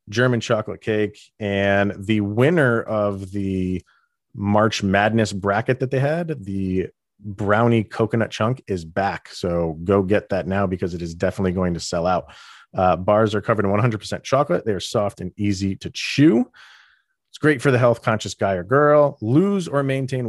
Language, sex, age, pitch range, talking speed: English, male, 30-49, 95-120 Hz, 170 wpm